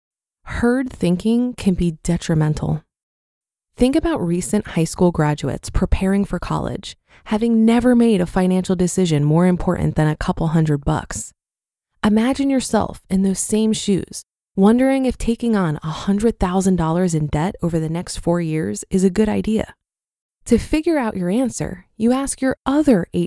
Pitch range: 175-235 Hz